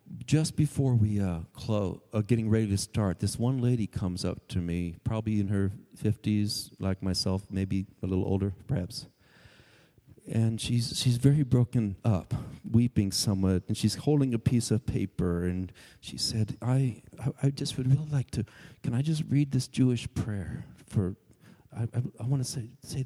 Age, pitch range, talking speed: 50-69, 100-125 Hz, 180 wpm